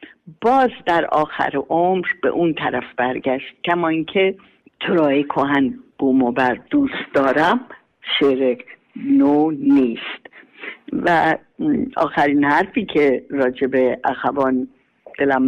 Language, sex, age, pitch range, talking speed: Persian, female, 50-69, 135-190 Hz, 105 wpm